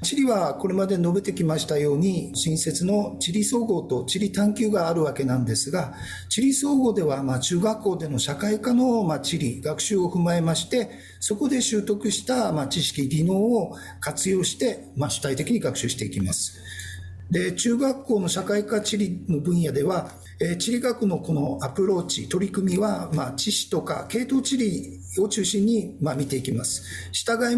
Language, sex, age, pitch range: Japanese, male, 50-69, 140-225 Hz